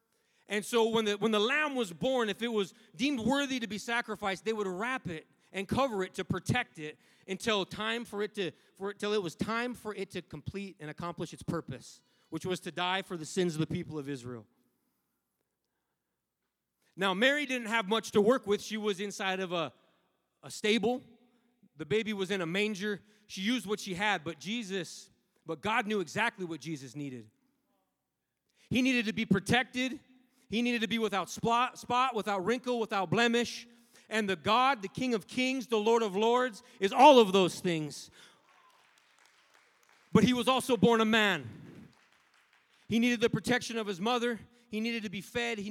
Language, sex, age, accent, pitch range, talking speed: English, male, 30-49, American, 190-235 Hz, 190 wpm